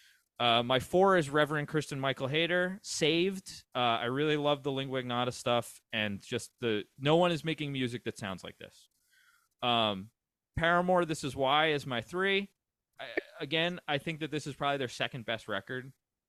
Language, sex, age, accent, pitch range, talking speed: English, male, 20-39, American, 115-155 Hz, 180 wpm